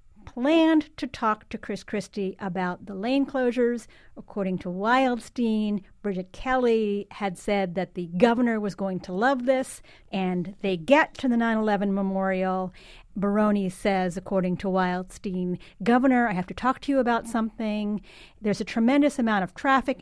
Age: 40-59